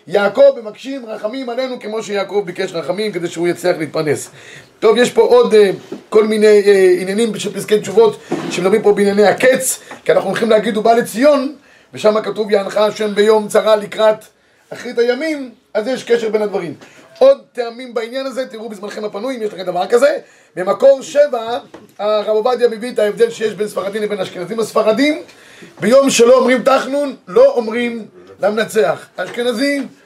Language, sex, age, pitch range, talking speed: Hebrew, male, 30-49, 205-245 Hz, 160 wpm